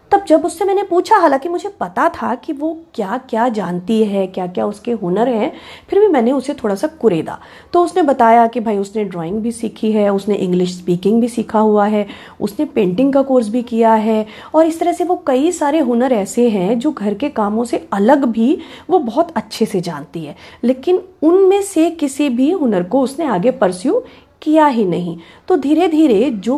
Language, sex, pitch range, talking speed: Hindi, female, 215-310 Hz, 205 wpm